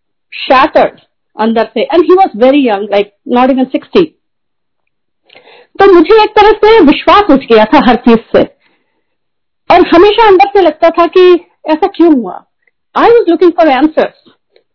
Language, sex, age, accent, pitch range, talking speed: Hindi, female, 50-69, native, 235-325 Hz, 135 wpm